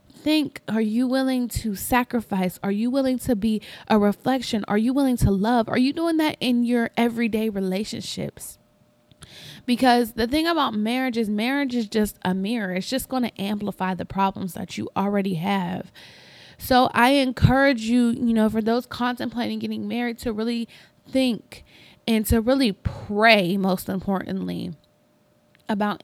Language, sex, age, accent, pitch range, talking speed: English, female, 20-39, American, 195-245 Hz, 160 wpm